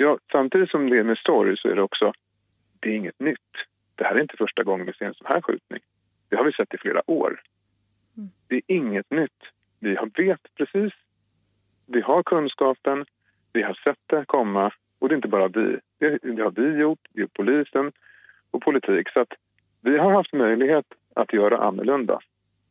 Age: 40-59